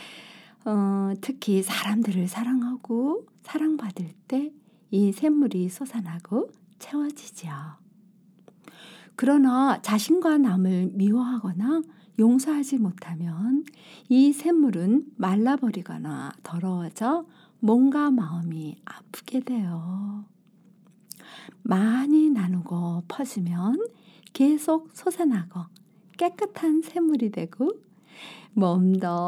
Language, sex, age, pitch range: Korean, female, 50-69, 190-275 Hz